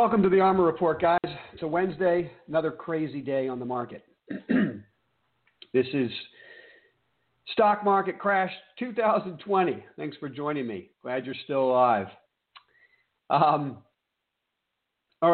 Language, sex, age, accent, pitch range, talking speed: English, male, 50-69, American, 115-150 Hz, 120 wpm